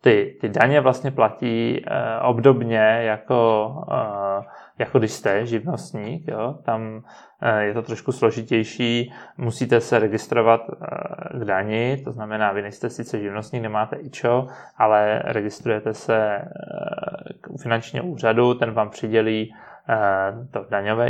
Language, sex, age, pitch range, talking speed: Czech, male, 20-39, 110-125 Hz, 135 wpm